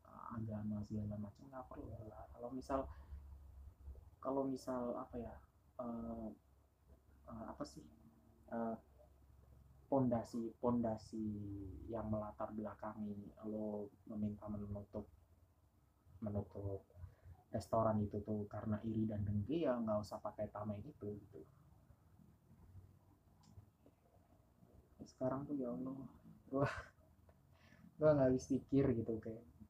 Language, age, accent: Indonesian, 20-39, native